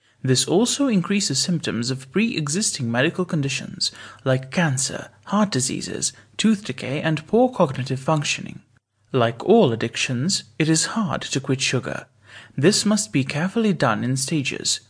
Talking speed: 135 wpm